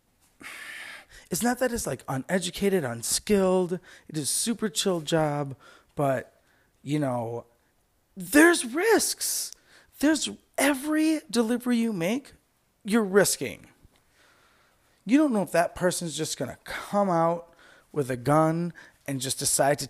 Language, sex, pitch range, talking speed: English, male, 145-215 Hz, 125 wpm